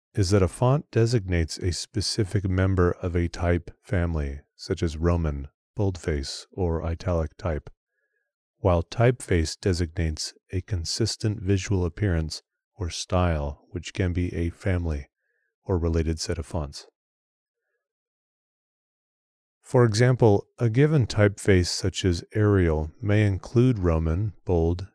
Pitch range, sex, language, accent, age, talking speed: 85-105 Hz, male, English, American, 30-49, 120 wpm